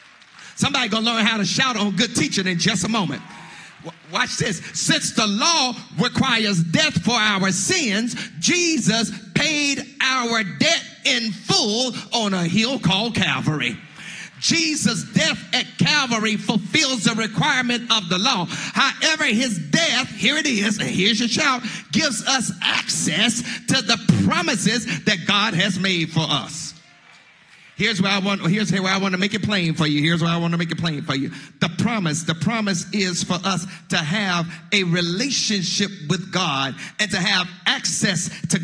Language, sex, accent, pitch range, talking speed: English, male, American, 180-225 Hz, 170 wpm